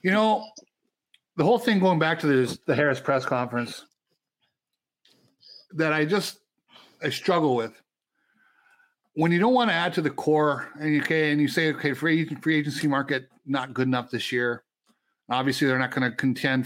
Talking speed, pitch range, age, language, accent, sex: 180 wpm, 135-210 Hz, 60-79, English, American, male